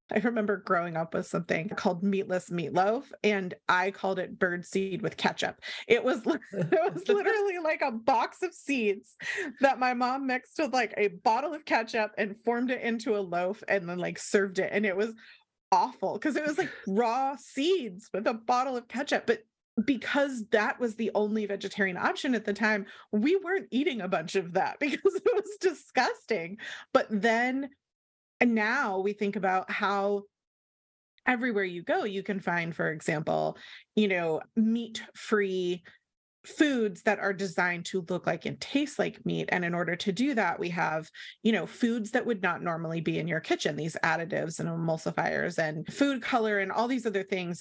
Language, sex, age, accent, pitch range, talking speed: English, female, 30-49, American, 190-250 Hz, 185 wpm